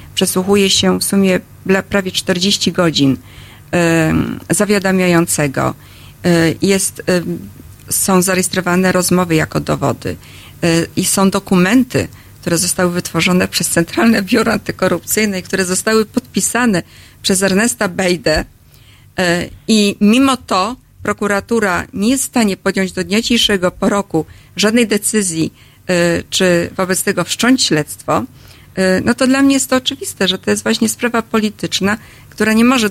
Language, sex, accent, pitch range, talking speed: Polish, female, native, 170-210 Hz, 130 wpm